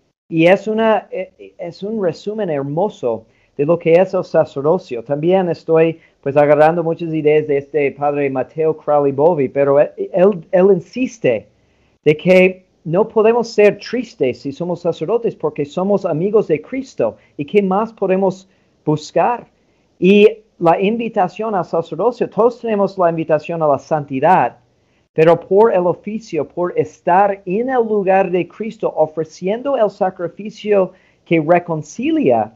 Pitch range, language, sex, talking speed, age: 155-200 Hz, Spanish, male, 140 wpm, 40-59